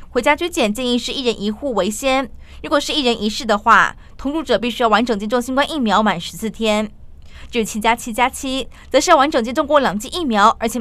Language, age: Chinese, 20-39